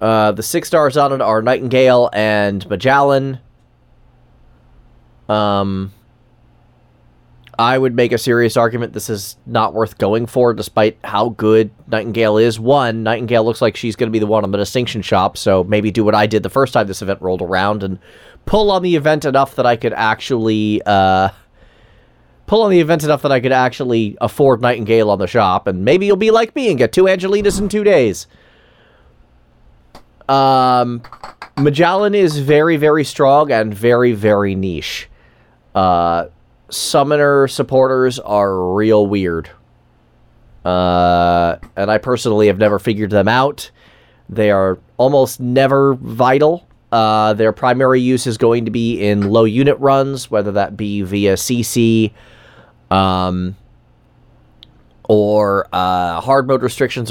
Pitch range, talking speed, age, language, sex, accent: 100-130 Hz, 155 wpm, 30-49, English, male, American